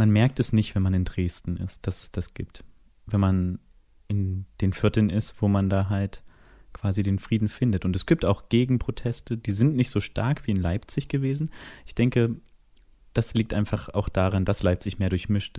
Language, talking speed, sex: German, 200 wpm, male